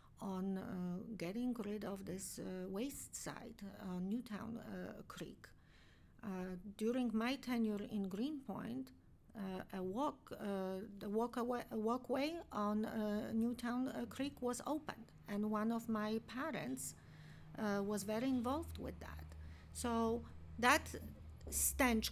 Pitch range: 195-235 Hz